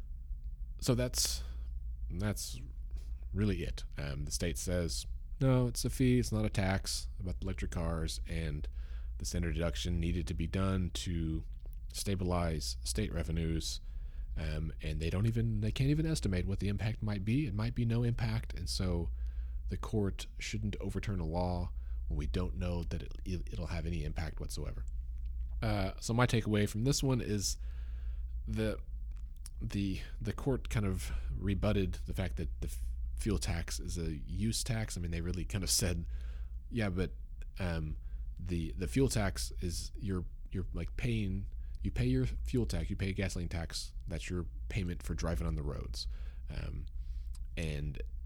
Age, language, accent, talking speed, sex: 30-49, English, American, 170 wpm, male